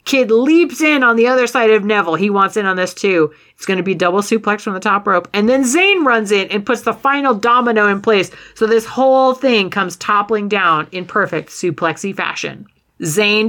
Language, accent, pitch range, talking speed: English, American, 180-235 Hz, 220 wpm